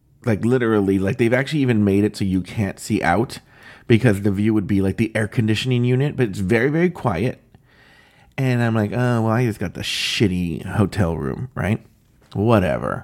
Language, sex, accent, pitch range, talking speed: English, male, American, 100-135 Hz, 195 wpm